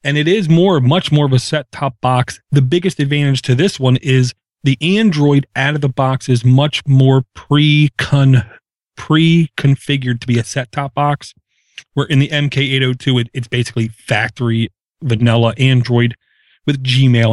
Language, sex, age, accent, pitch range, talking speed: English, male, 30-49, American, 125-145 Hz, 150 wpm